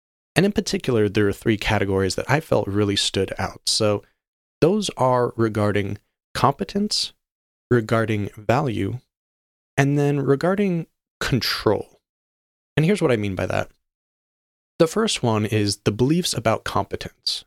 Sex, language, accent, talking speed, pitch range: male, English, American, 135 wpm, 100-130 Hz